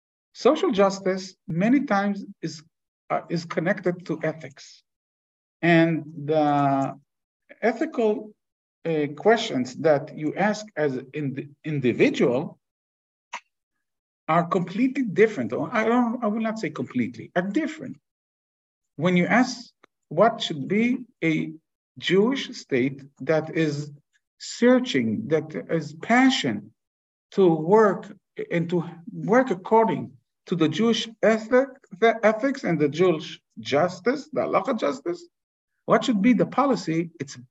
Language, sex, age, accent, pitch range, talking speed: English, male, 50-69, Israeli, 145-220 Hz, 120 wpm